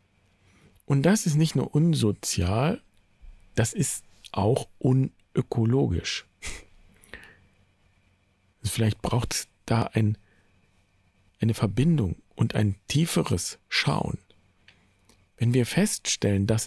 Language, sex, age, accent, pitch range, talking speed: German, male, 50-69, German, 95-135 Hz, 85 wpm